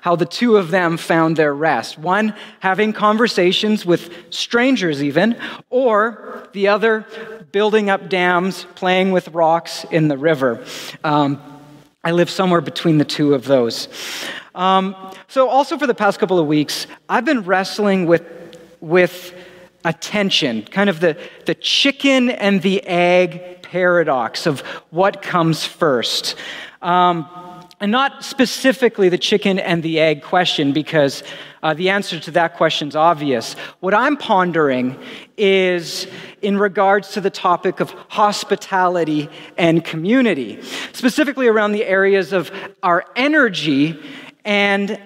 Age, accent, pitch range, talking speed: 40-59, American, 165-210 Hz, 135 wpm